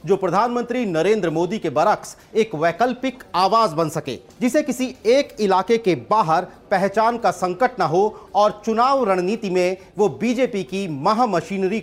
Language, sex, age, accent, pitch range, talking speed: Hindi, male, 40-59, native, 170-230 Hz, 155 wpm